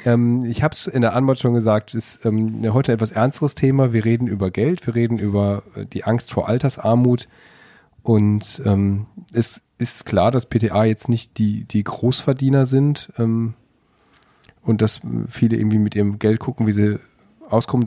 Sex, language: male, German